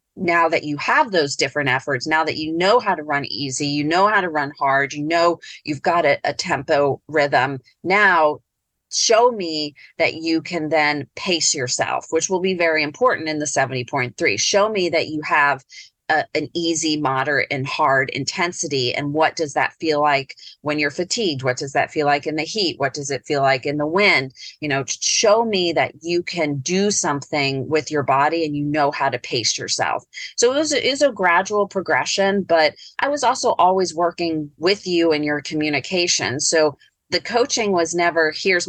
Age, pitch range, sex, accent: 30-49, 145-175 Hz, female, American